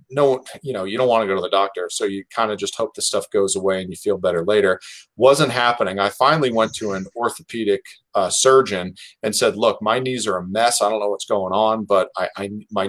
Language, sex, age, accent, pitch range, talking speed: English, male, 40-59, American, 100-145 Hz, 240 wpm